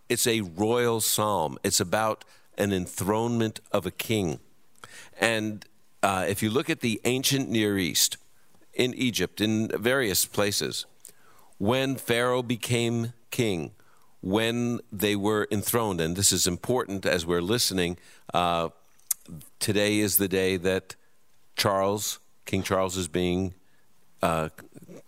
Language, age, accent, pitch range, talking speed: English, 50-69, American, 90-115 Hz, 125 wpm